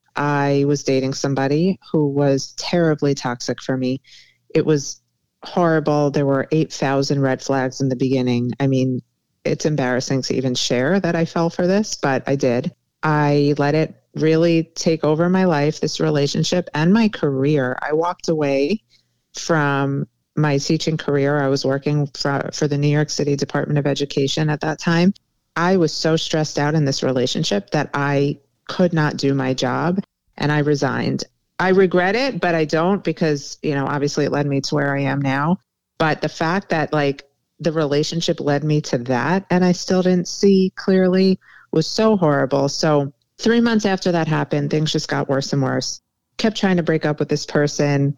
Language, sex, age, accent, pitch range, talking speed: English, female, 30-49, American, 135-165 Hz, 185 wpm